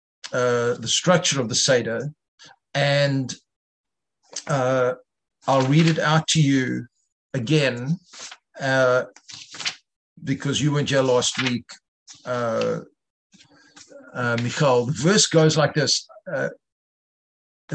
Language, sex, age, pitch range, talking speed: English, male, 50-69, 140-165 Hz, 110 wpm